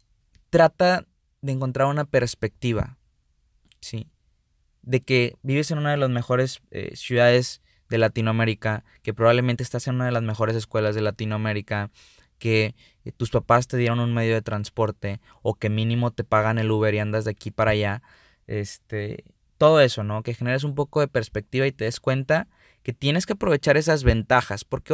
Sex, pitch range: male, 110-130 Hz